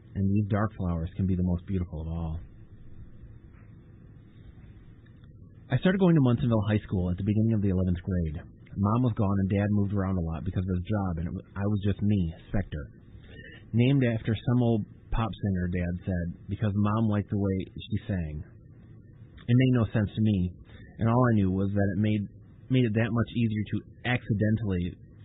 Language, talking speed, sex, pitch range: English, 190 wpm, male, 95-115 Hz